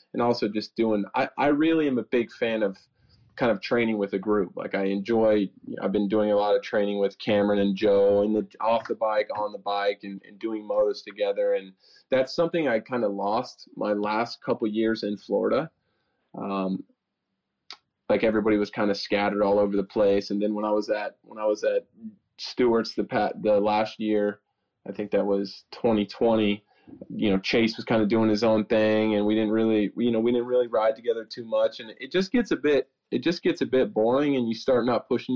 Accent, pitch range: American, 105-125 Hz